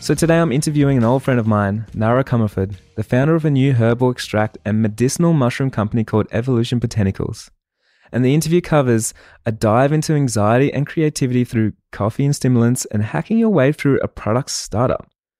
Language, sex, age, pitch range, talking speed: English, male, 20-39, 105-135 Hz, 185 wpm